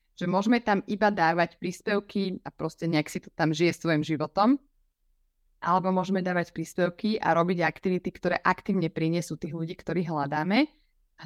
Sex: female